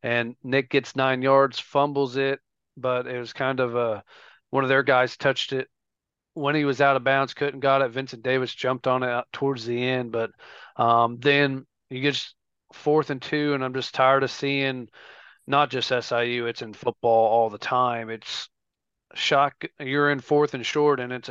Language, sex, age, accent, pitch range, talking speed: English, male, 40-59, American, 120-135 Hz, 195 wpm